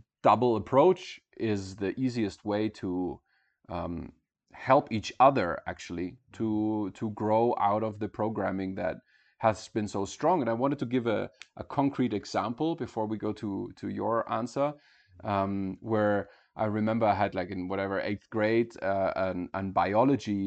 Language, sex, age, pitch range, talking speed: English, male, 30-49, 100-125 Hz, 165 wpm